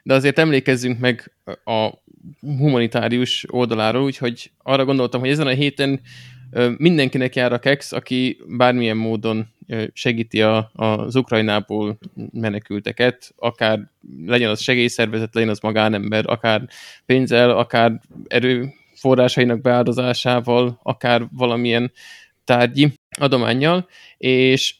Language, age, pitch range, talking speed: Hungarian, 20-39, 110-130 Hz, 100 wpm